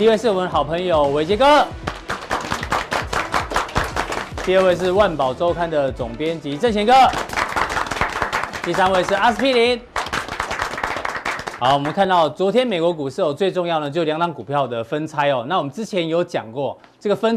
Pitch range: 140-190 Hz